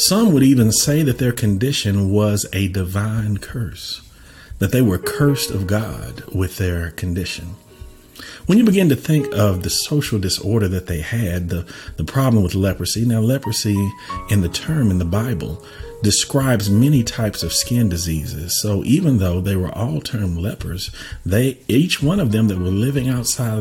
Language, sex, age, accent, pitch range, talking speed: English, male, 50-69, American, 95-120 Hz, 175 wpm